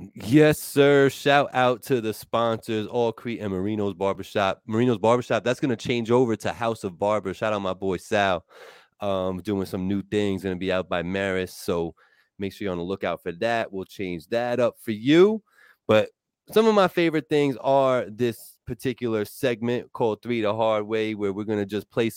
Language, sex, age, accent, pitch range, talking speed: English, male, 30-49, American, 110-150 Hz, 205 wpm